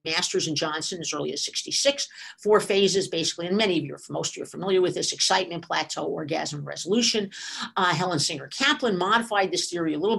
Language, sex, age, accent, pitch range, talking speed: English, female, 50-69, American, 170-235 Hz, 205 wpm